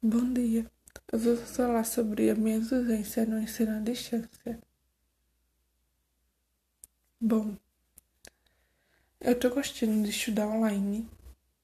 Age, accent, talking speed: 10-29, Brazilian, 105 wpm